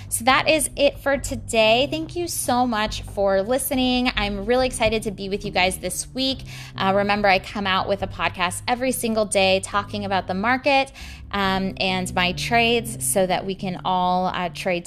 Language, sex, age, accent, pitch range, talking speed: English, female, 20-39, American, 180-225 Hz, 195 wpm